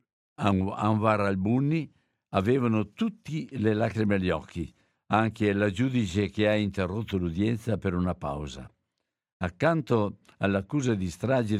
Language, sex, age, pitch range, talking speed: Italian, male, 60-79, 100-120 Hz, 115 wpm